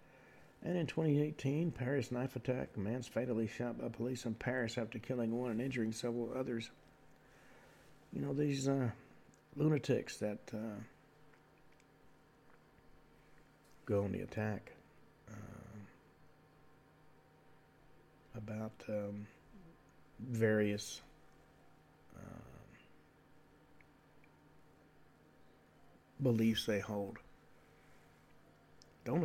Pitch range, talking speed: 110-145 Hz, 85 wpm